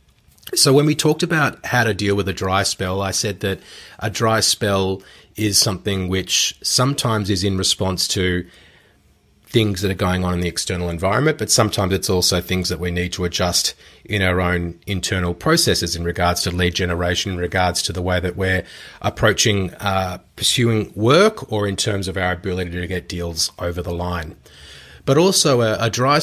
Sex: male